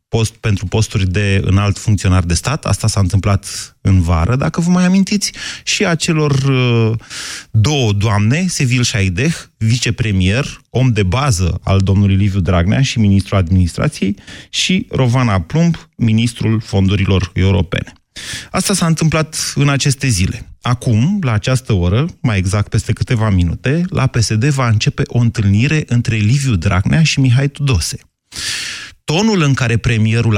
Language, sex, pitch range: Romanian, male, 105-145 Hz